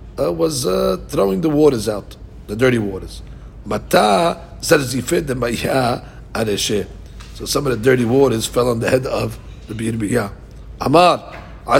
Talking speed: 120 wpm